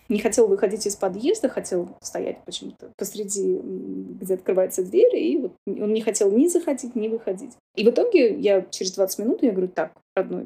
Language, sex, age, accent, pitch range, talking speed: Russian, female, 20-39, native, 200-255 Hz, 185 wpm